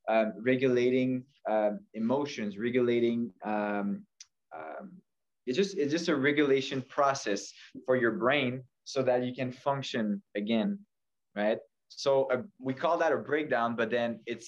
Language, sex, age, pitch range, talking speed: English, male, 20-39, 110-135 Hz, 135 wpm